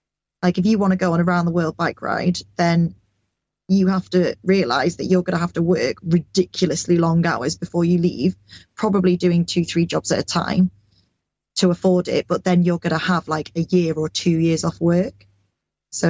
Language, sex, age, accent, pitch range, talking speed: English, female, 20-39, British, 160-185 Hz, 210 wpm